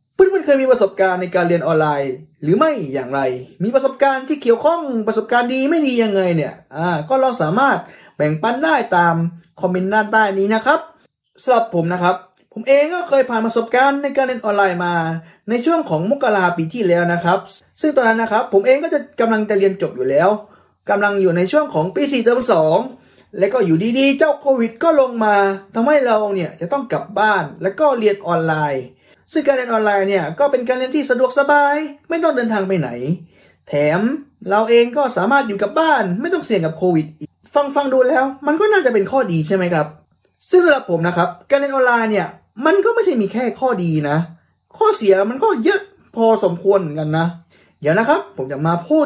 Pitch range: 175-270 Hz